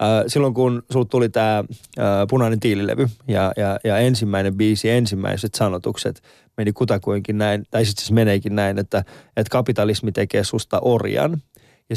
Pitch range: 115-150 Hz